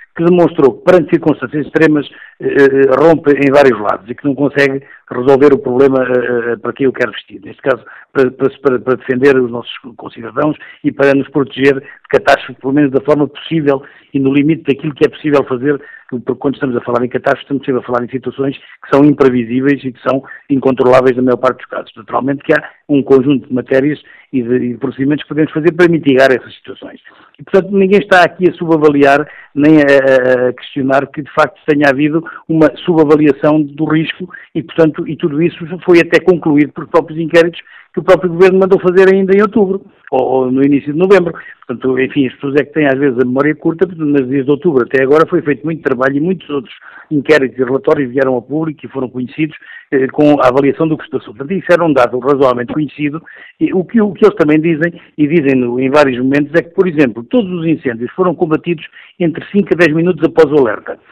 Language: Portuguese